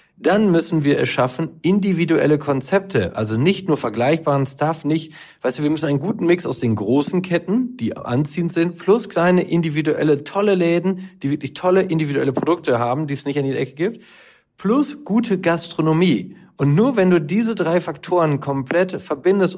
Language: German